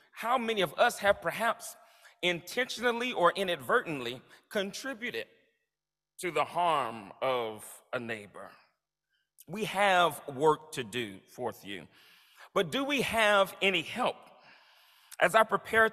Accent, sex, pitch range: American, male, 175-235 Hz